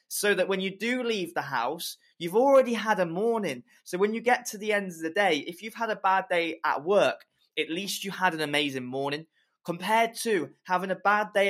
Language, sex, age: English, male, 20-39